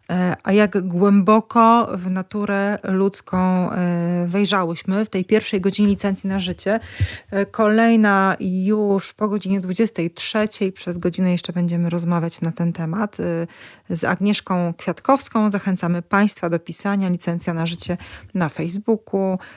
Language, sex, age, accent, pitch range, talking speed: Polish, female, 30-49, native, 170-195 Hz, 120 wpm